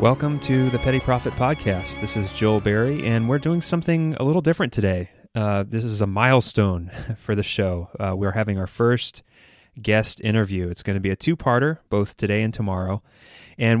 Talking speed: 185 wpm